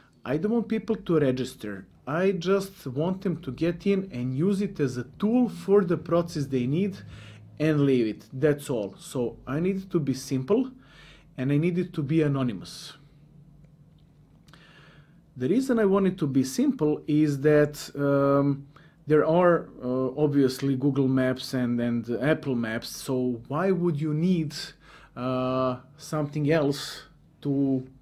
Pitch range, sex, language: 135-170 Hz, male, English